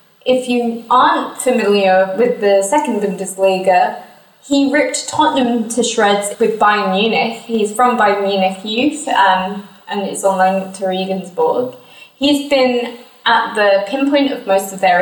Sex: female